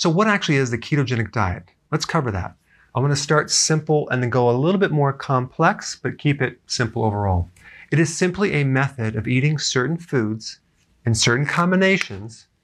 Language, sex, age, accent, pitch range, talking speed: English, male, 40-59, American, 120-155 Hz, 190 wpm